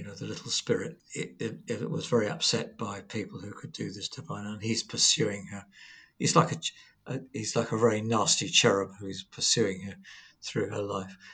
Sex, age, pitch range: male, 50-69, 100-145 Hz